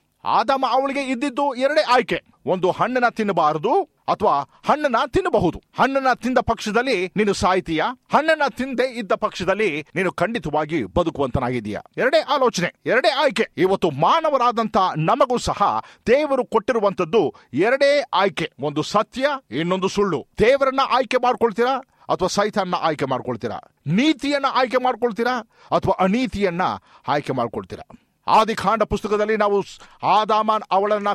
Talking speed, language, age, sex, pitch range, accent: 110 wpm, Kannada, 50-69, male, 180-250 Hz, native